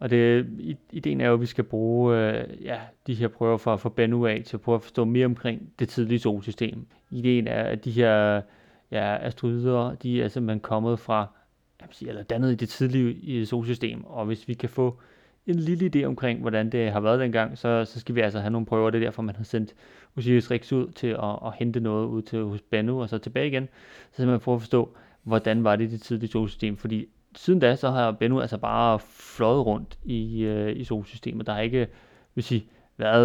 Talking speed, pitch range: 220 wpm, 110-125 Hz